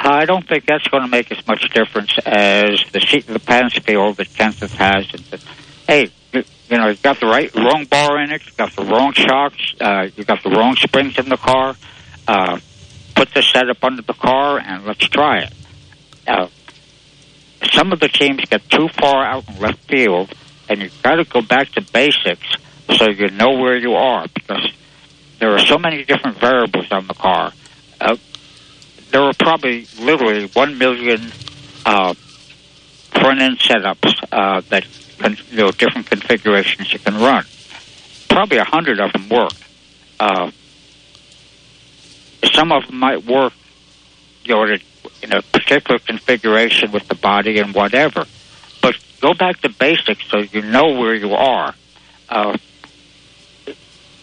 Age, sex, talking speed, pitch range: 60-79, male, 165 wpm, 105-140 Hz